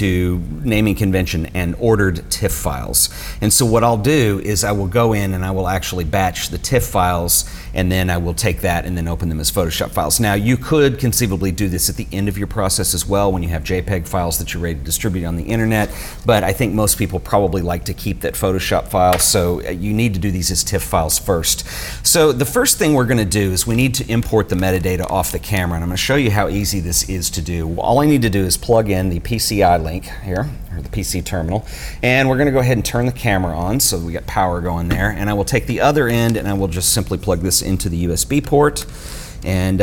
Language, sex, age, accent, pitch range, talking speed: English, male, 40-59, American, 90-115 Hz, 255 wpm